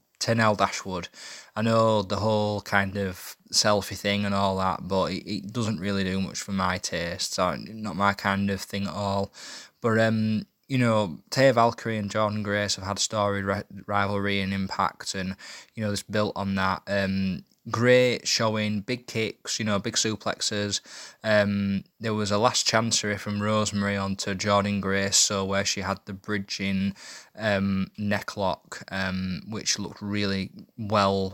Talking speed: 170 wpm